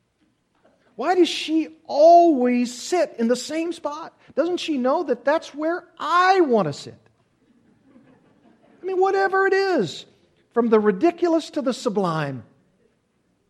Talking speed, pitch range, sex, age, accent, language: 135 wpm, 175-285 Hz, male, 50-69, American, English